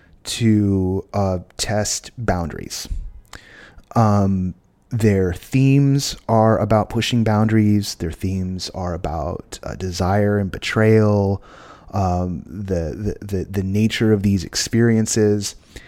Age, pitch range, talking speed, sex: 30-49, 95-125 Hz, 105 wpm, male